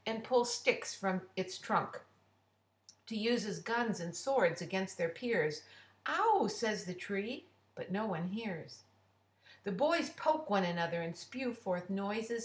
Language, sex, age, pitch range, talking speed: English, female, 60-79, 170-255 Hz, 155 wpm